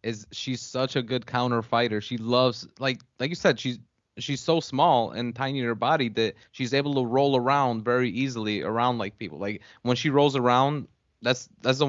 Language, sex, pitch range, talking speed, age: English, male, 110-135 Hz, 205 wpm, 20-39